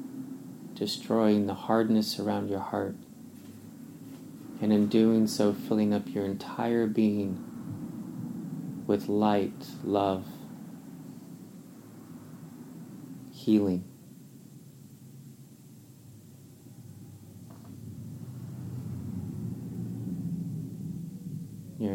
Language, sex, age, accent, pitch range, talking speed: English, male, 30-49, American, 100-120 Hz, 55 wpm